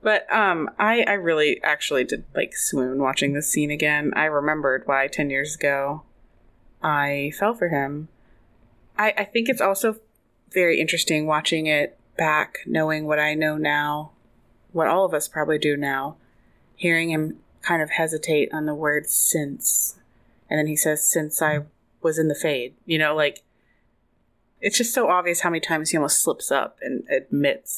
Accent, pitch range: American, 145-180 Hz